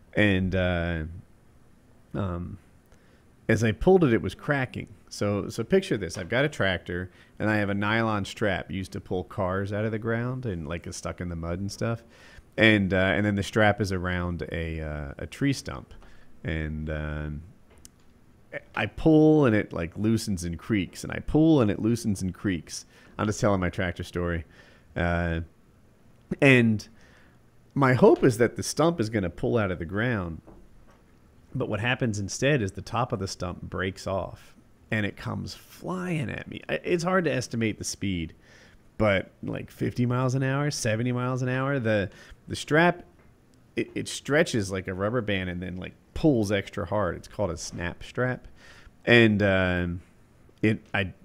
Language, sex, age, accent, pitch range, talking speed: English, male, 40-59, American, 90-115 Hz, 180 wpm